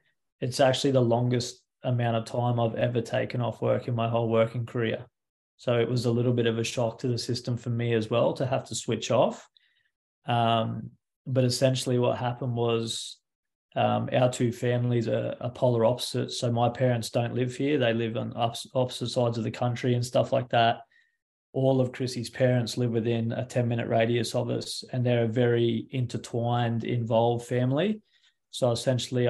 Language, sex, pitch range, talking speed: English, male, 115-130 Hz, 185 wpm